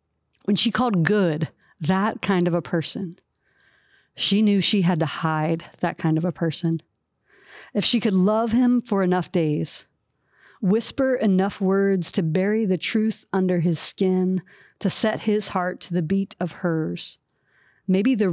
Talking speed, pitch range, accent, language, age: 160 wpm, 165-195 Hz, American, English, 40-59